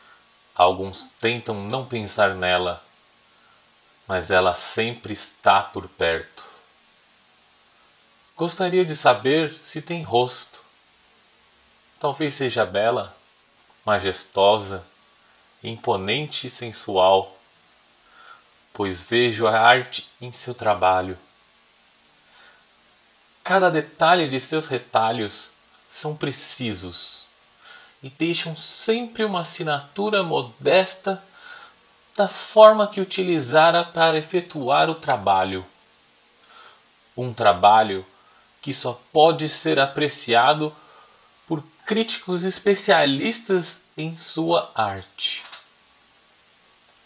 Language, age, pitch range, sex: Portuguese, 30-49, 110-165 Hz, male